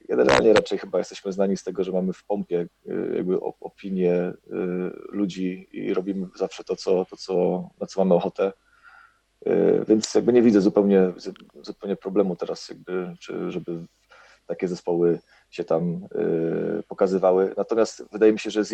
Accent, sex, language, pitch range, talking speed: native, male, Polish, 95-110 Hz, 140 wpm